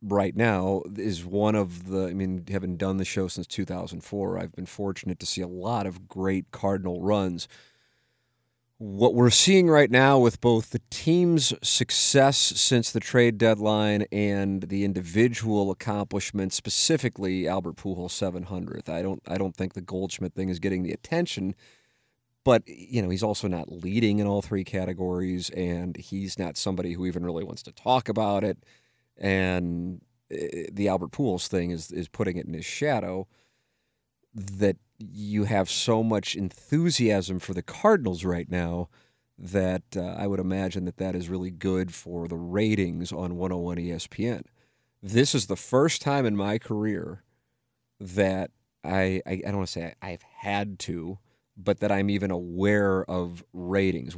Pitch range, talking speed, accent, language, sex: 90-110 Hz, 160 wpm, American, English, male